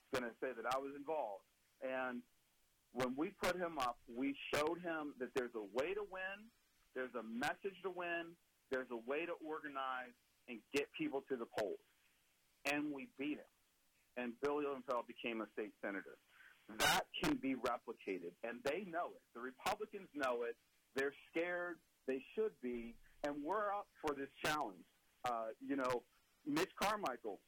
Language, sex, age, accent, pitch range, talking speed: English, male, 50-69, American, 120-165 Hz, 170 wpm